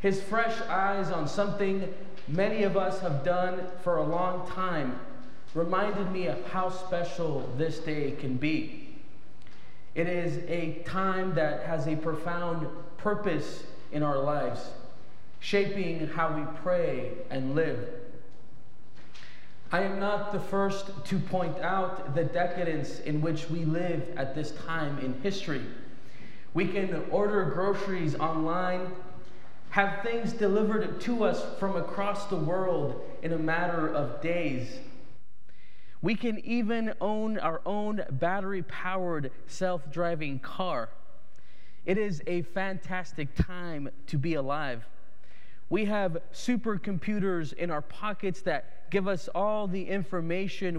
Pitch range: 160-195 Hz